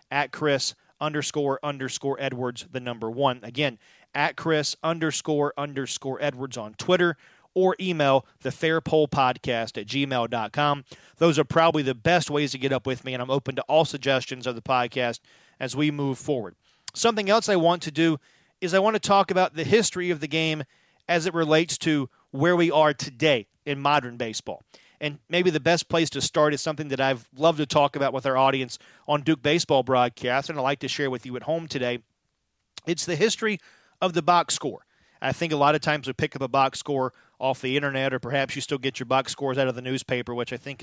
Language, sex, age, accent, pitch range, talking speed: English, male, 40-59, American, 130-160 Hz, 210 wpm